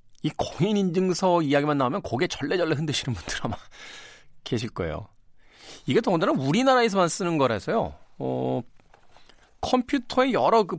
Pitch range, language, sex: 125-210 Hz, Korean, male